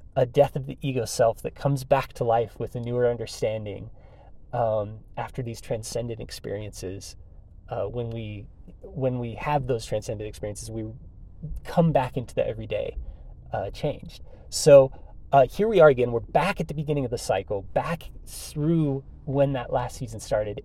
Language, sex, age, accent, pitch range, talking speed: English, male, 30-49, American, 105-145 Hz, 170 wpm